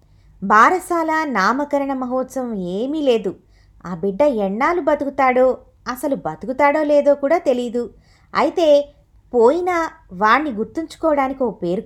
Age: 20-39